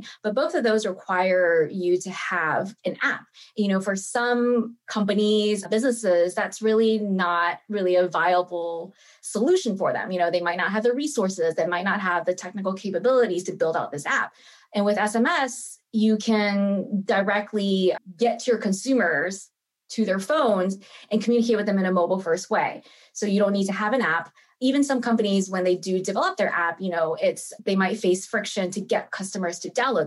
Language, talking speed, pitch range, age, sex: English, 190 wpm, 180-230 Hz, 20-39, female